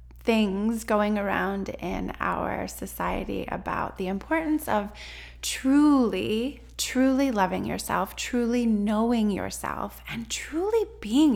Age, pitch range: 20-39, 190-245 Hz